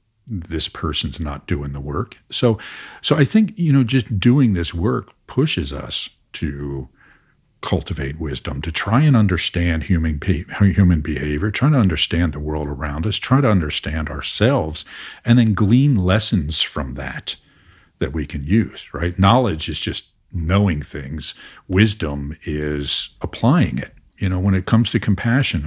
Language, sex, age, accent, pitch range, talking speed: English, male, 50-69, American, 75-115 Hz, 155 wpm